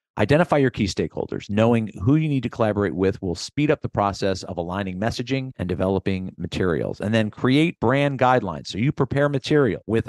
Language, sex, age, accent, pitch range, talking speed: English, male, 50-69, American, 90-130 Hz, 190 wpm